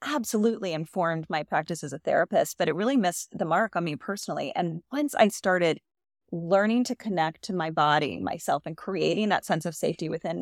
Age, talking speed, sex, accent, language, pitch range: 20-39, 195 wpm, female, American, English, 170-225 Hz